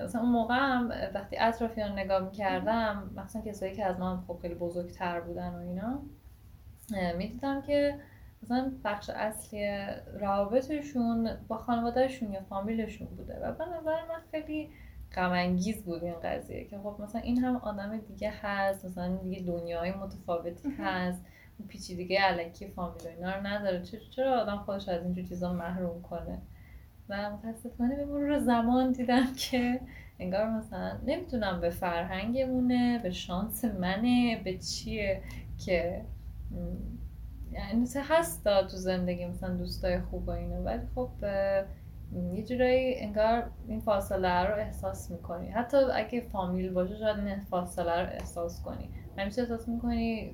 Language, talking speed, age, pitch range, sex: Persian, 145 wpm, 10-29, 175-230 Hz, female